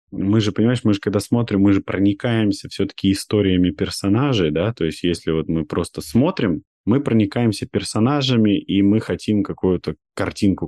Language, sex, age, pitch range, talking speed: Russian, male, 20-39, 90-110 Hz, 165 wpm